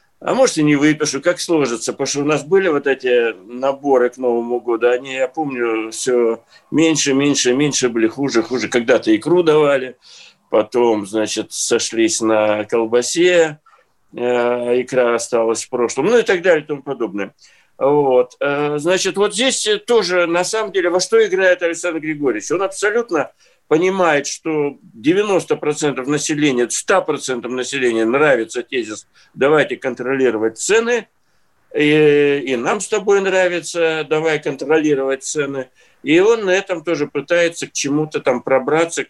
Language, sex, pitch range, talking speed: Russian, male, 130-180 Hz, 140 wpm